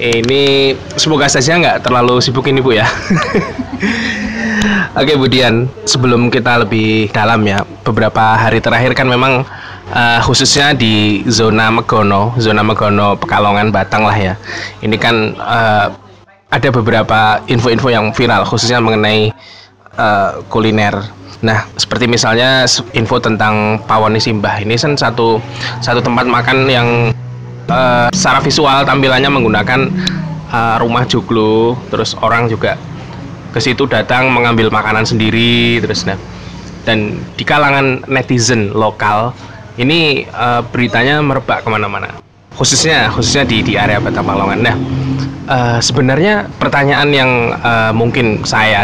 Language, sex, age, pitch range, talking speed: Indonesian, male, 20-39, 110-130 Hz, 130 wpm